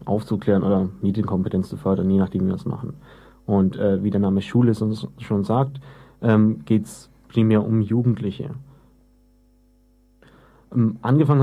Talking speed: 150 wpm